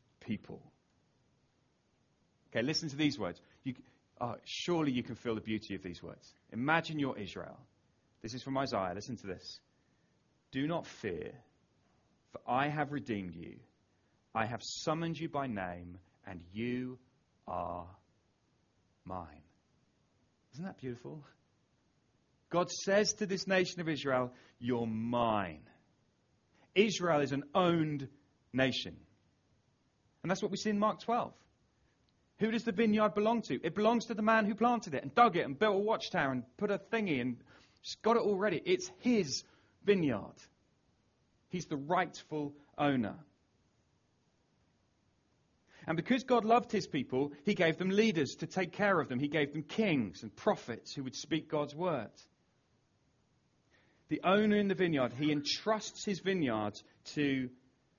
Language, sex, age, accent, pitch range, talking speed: English, male, 30-49, British, 120-195 Hz, 150 wpm